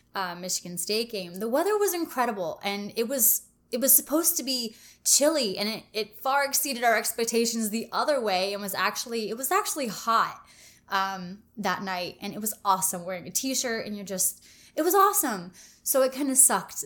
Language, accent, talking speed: English, American, 195 wpm